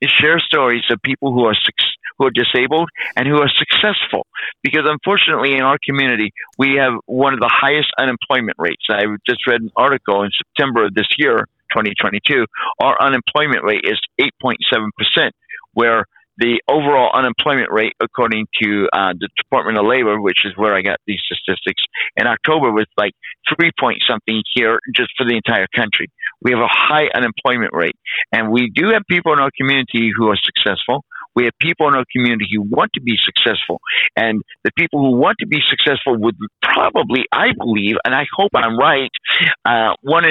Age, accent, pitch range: 60-79, American, 115-155 Hz